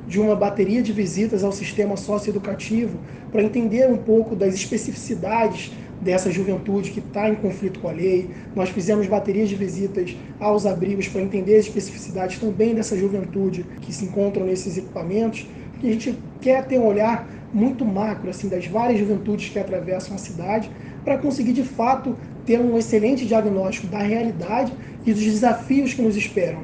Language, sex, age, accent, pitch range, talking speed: Portuguese, male, 20-39, Brazilian, 195-225 Hz, 170 wpm